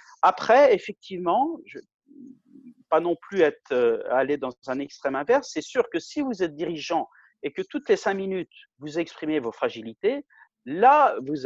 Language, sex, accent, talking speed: French, male, French, 170 wpm